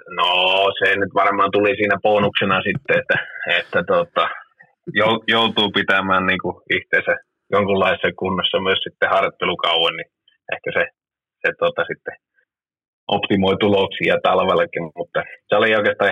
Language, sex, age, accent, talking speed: Finnish, male, 30-49, native, 120 wpm